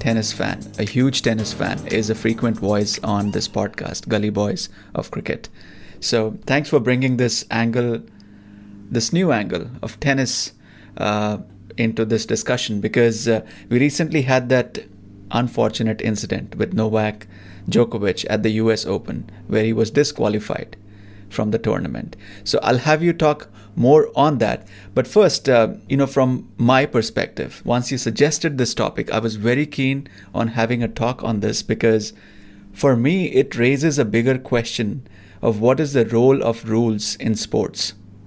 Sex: male